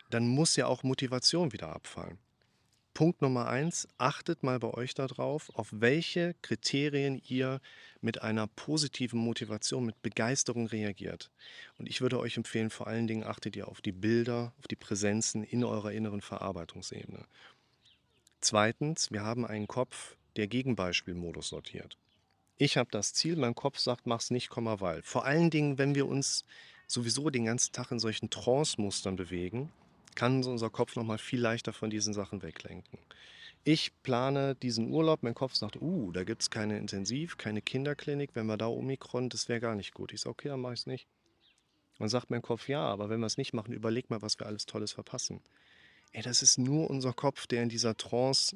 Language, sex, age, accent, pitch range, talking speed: German, male, 40-59, German, 110-130 Hz, 185 wpm